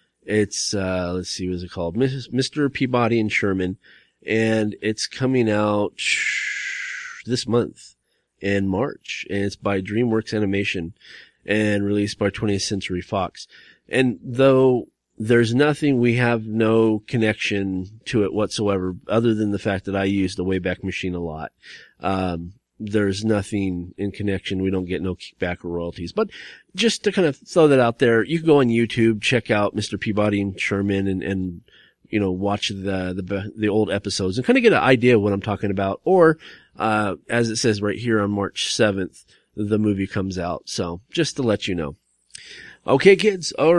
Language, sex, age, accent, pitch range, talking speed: English, male, 30-49, American, 95-125 Hz, 180 wpm